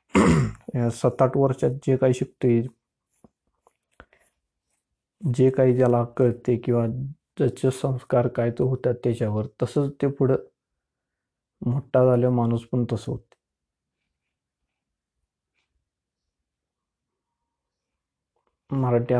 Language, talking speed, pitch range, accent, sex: Marathi, 85 wpm, 120-135 Hz, native, male